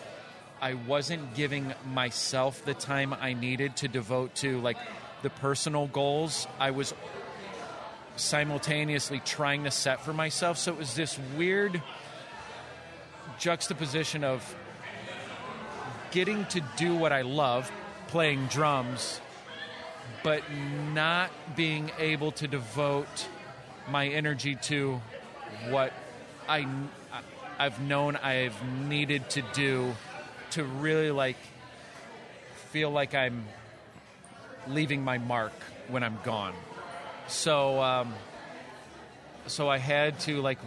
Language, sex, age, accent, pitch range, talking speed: English, male, 40-59, American, 125-150 Hz, 110 wpm